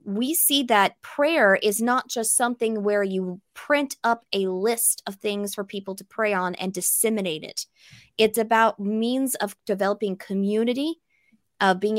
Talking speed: 160 wpm